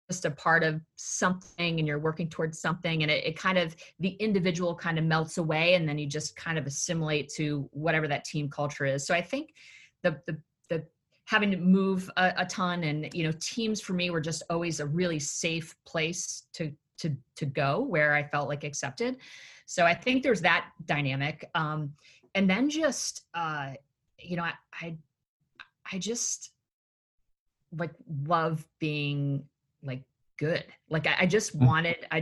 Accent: American